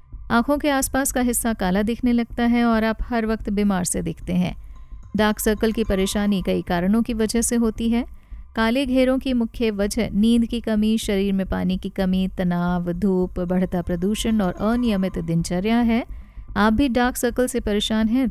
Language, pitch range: Hindi, 190-235 Hz